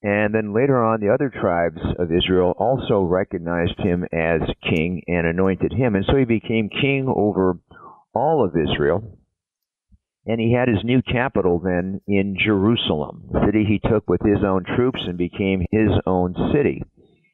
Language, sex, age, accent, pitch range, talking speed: English, male, 50-69, American, 95-120 Hz, 165 wpm